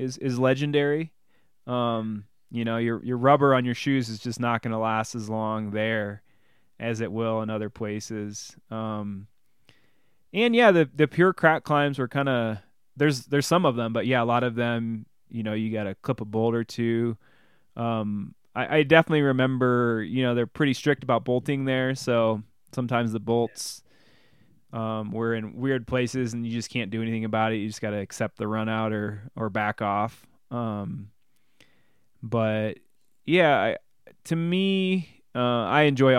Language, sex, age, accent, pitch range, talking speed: English, male, 20-39, American, 110-135 Hz, 180 wpm